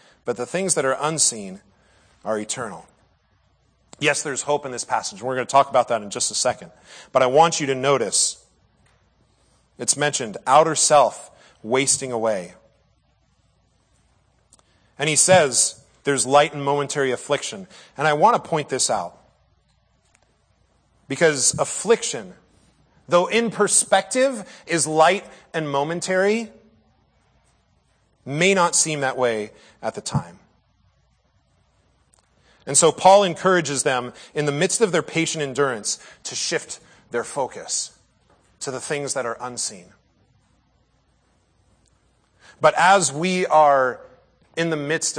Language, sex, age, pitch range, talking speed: English, male, 40-59, 130-170 Hz, 130 wpm